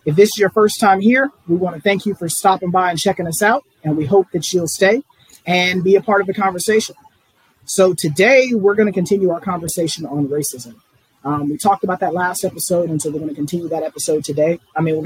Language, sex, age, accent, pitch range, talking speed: English, male, 30-49, American, 155-190 Hz, 245 wpm